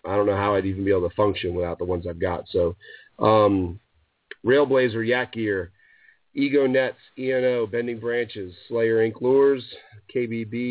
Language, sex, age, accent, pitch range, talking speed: English, male, 40-59, American, 100-120 Hz, 165 wpm